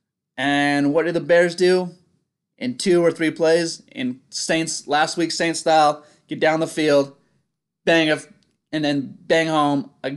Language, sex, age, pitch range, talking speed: English, male, 20-39, 130-165 Hz, 170 wpm